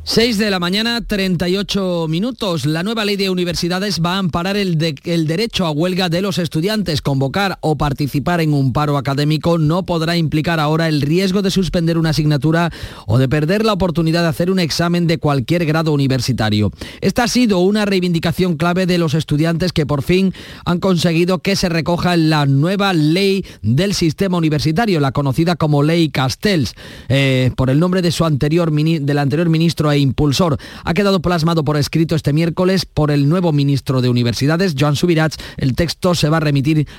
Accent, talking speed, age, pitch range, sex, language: Spanish, 185 wpm, 30-49, 150-180 Hz, male, Spanish